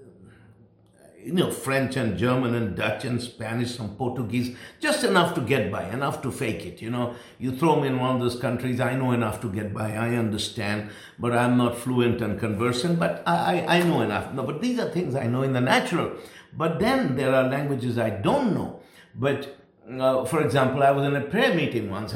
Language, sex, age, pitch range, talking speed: English, male, 60-79, 120-180 Hz, 215 wpm